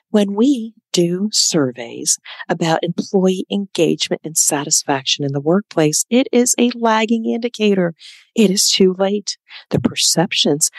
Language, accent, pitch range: English, American, 145-205 Hz